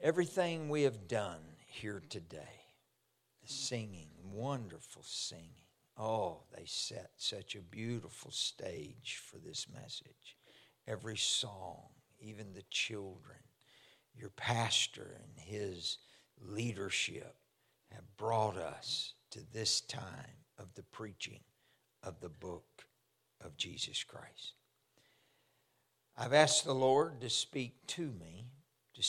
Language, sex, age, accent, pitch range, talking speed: English, male, 60-79, American, 105-135 Hz, 110 wpm